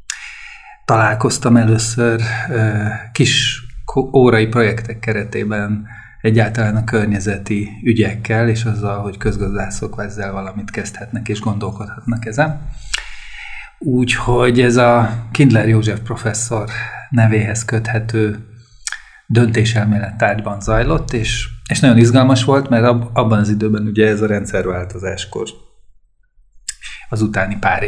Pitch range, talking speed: 105-120 Hz, 100 wpm